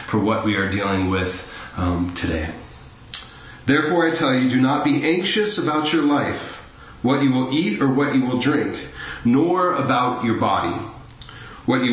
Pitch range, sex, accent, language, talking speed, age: 120-155 Hz, male, American, English, 170 wpm, 40-59